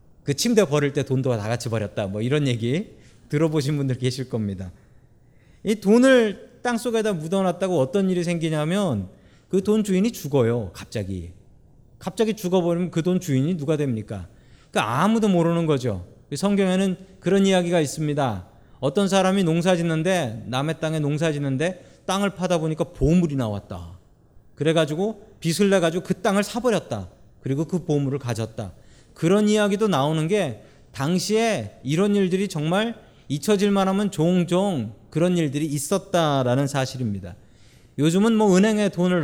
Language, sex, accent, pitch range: Korean, male, native, 130-190 Hz